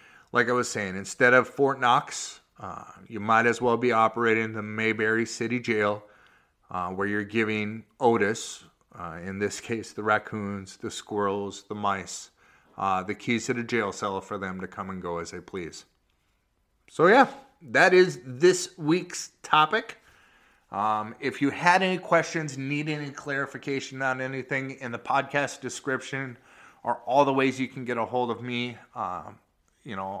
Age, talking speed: 30-49, 175 wpm